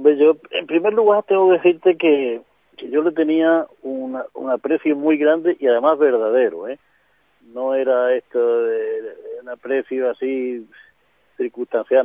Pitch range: 115-160 Hz